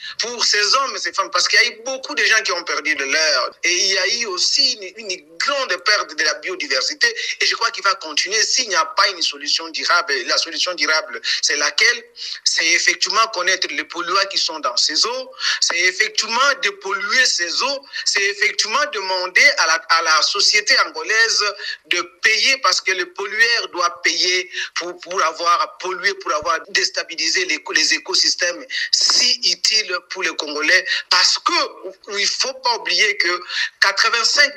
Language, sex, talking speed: French, male, 185 wpm